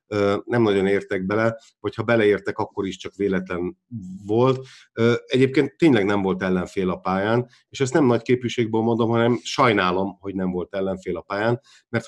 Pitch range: 100-125 Hz